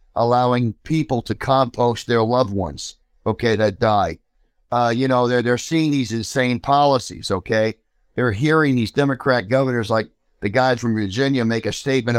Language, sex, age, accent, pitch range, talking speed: English, male, 50-69, American, 115-135 Hz, 160 wpm